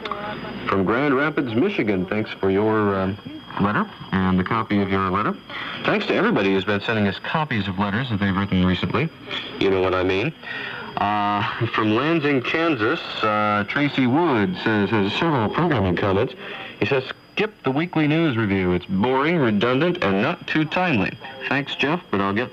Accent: American